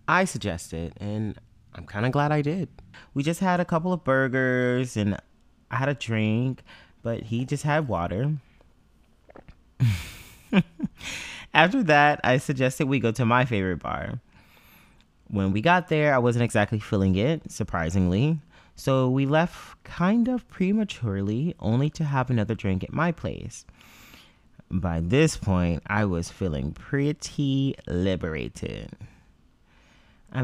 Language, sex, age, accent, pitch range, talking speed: English, male, 30-49, American, 100-140 Hz, 135 wpm